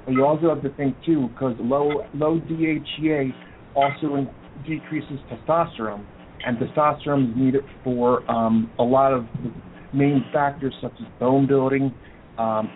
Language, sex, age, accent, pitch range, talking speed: English, male, 40-59, American, 120-145 Hz, 145 wpm